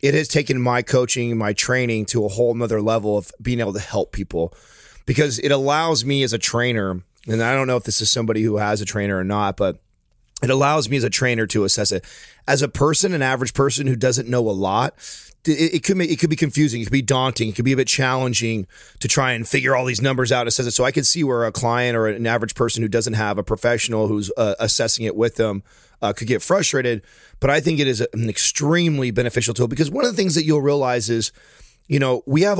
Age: 30-49